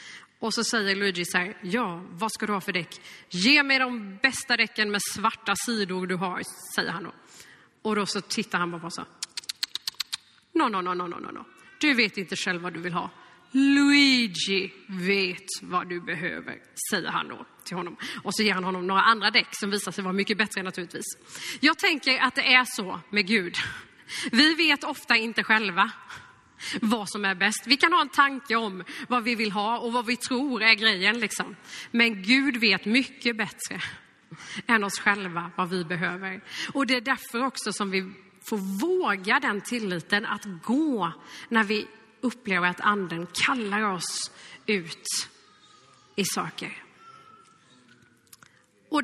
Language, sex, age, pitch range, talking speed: Swedish, female, 30-49, 190-250 Hz, 175 wpm